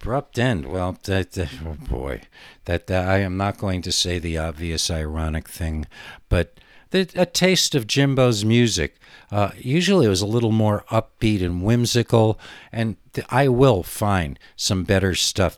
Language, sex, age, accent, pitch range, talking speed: English, male, 60-79, American, 85-115 Hz, 170 wpm